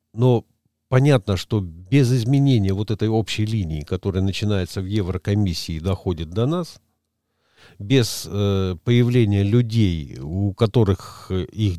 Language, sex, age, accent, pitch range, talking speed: Russian, male, 50-69, native, 90-115 Hz, 120 wpm